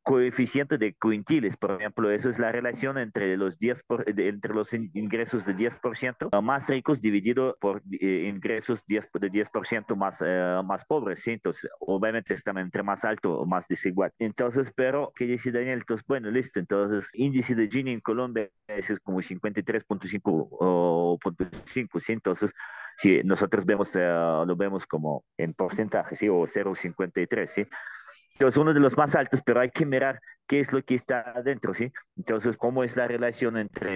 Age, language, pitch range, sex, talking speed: 30-49, Spanish, 95-120 Hz, male, 175 wpm